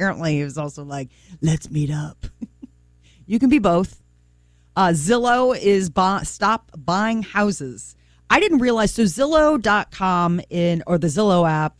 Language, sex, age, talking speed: English, female, 40-59, 135 wpm